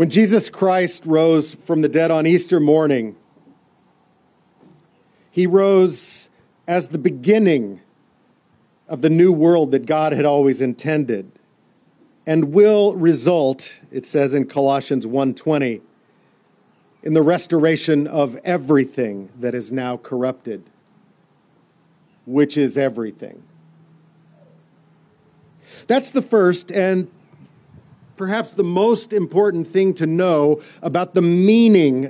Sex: male